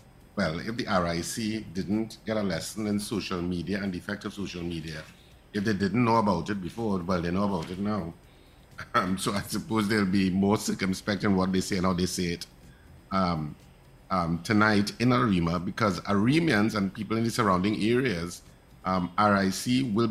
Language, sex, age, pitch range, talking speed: English, male, 50-69, 90-110 Hz, 190 wpm